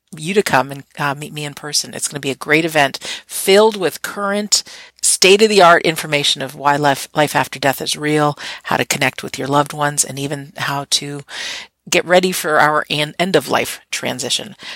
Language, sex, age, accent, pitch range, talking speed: English, female, 50-69, American, 140-180 Hz, 190 wpm